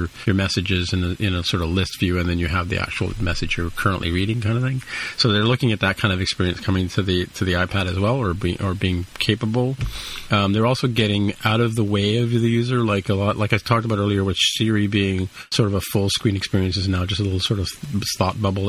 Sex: male